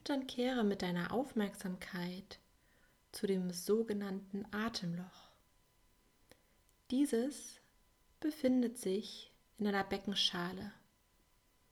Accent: German